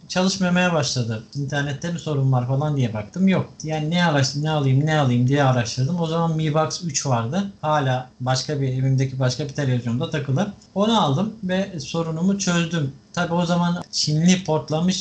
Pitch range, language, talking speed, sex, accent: 140-175 Hz, Turkish, 170 wpm, male, native